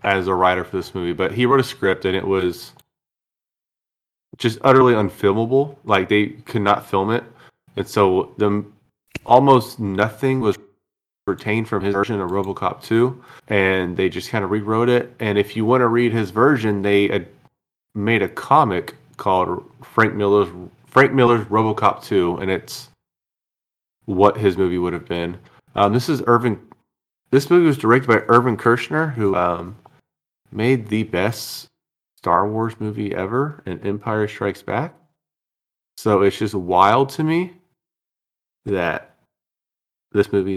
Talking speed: 155 wpm